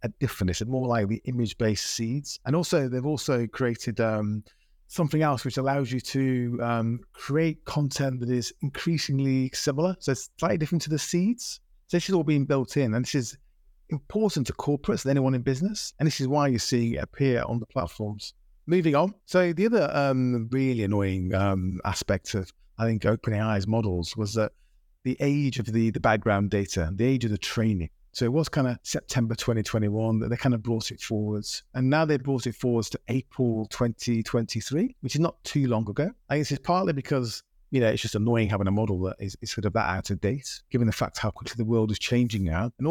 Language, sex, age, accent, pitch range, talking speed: English, male, 30-49, British, 110-145 Hz, 215 wpm